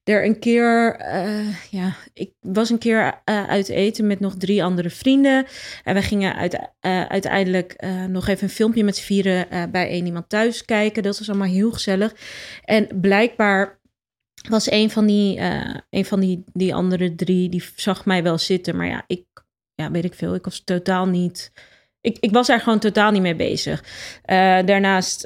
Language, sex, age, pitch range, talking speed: Dutch, female, 20-39, 180-205 Hz, 195 wpm